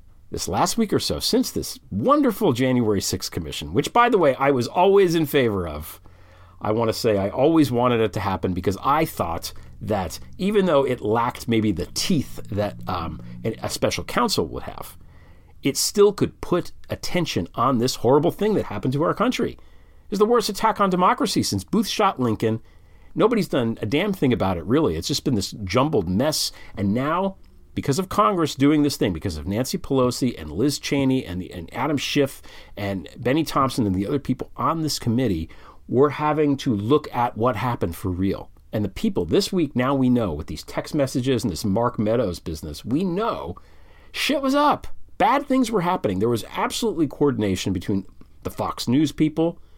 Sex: male